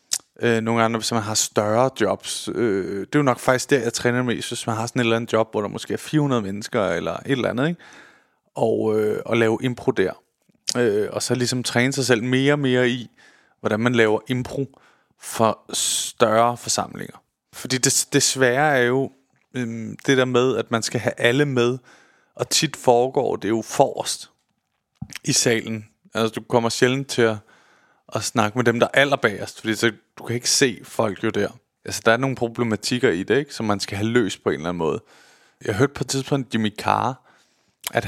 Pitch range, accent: 115-130 Hz, native